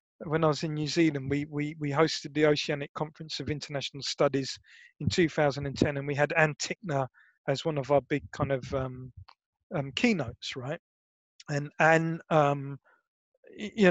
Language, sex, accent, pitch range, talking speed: English, male, British, 145-180 Hz, 175 wpm